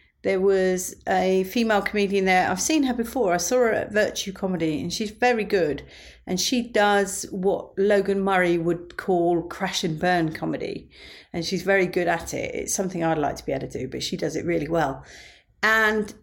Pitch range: 175-215 Hz